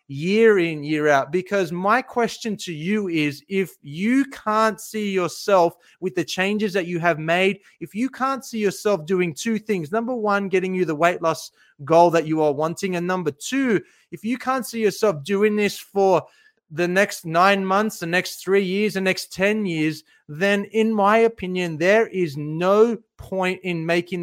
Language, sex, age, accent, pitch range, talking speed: English, male, 30-49, Australian, 160-200 Hz, 185 wpm